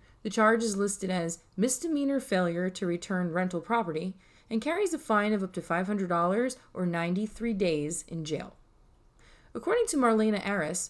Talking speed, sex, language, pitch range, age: 155 wpm, female, English, 175-225 Hz, 30-49